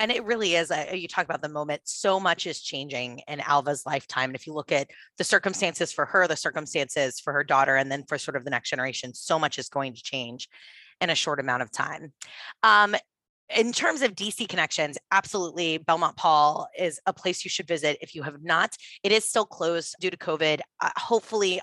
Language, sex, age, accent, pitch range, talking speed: English, female, 20-39, American, 145-185 Hz, 215 wpm